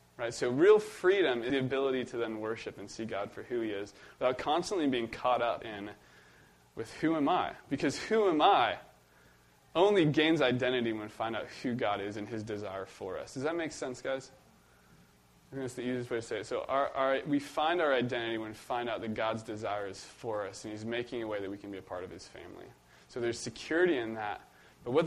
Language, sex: English, male